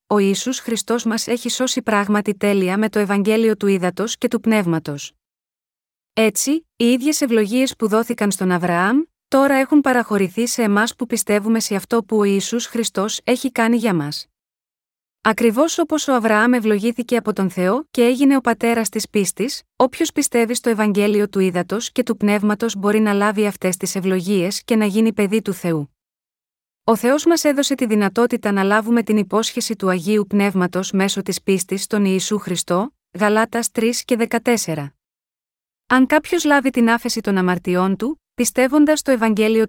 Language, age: Greek, 20-39